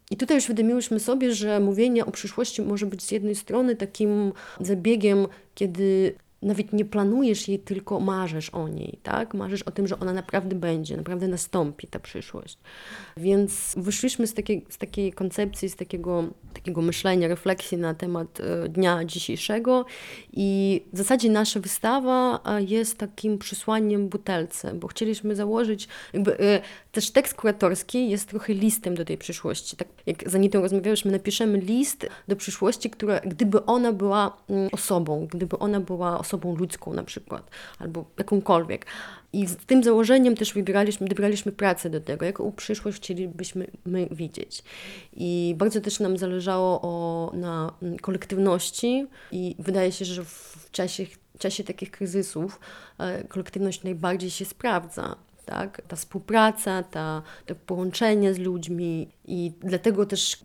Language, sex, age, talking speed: Polish, female, 20-39, 150 wpm